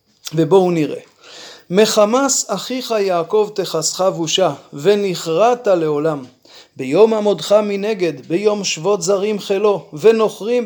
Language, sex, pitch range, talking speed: Hebrew, male, 175-220 Hz, 95 wpm